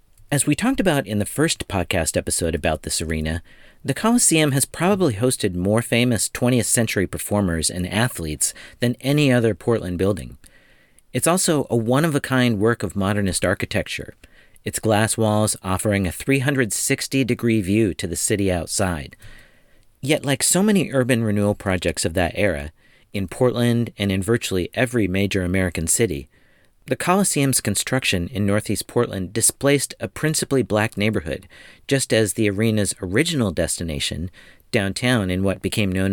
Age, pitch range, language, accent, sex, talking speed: 40-59, 95-130 Hz, English, American, male, 150 wpm